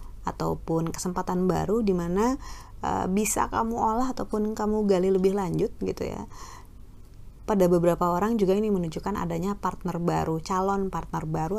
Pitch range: 160-200 Hz